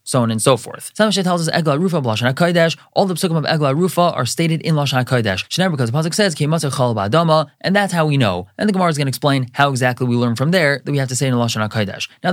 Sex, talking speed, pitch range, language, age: male, 280 wpm, 130-165 Hz, English, 20-39